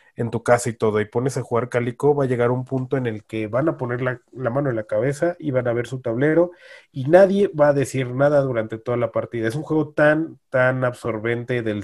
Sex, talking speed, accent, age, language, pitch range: male, 255 wpm, Mexican, 30-49, Spanish, 115-145 Hz